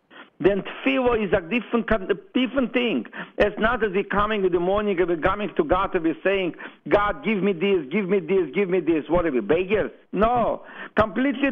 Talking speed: 190 wpm